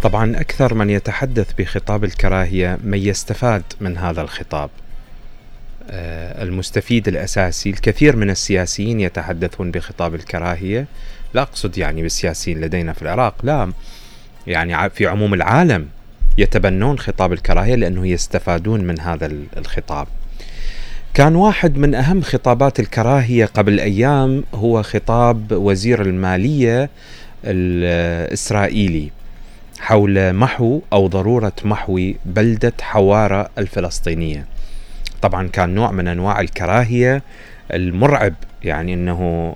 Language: Arabic